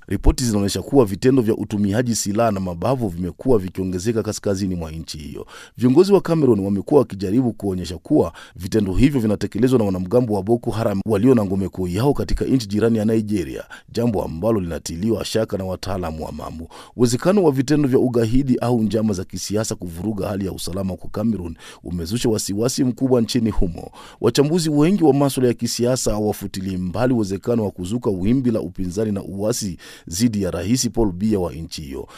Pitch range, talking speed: 95-120 Hz, 170 wpm